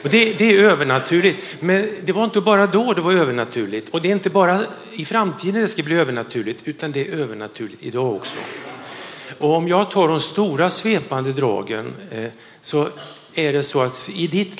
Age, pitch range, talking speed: 50-69, 135-190 Hz, 190 wpm